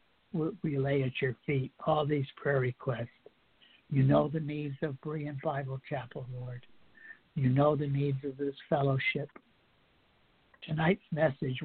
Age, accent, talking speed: 60-79, American, 140 wpm